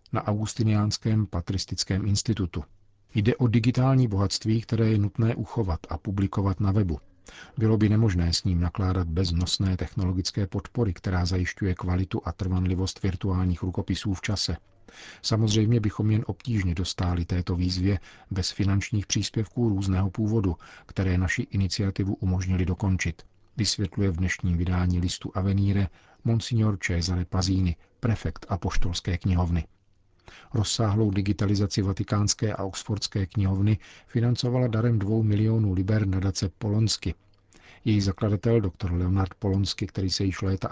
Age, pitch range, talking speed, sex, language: 40-59, 95-110 Hz, 125 wpm, male, Czech